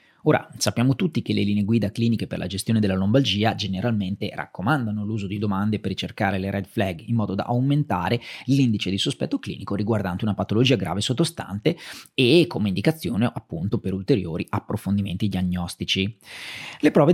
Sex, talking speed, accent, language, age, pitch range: male, 160 wpm, native, Italian, 30-49, 100-145 Hz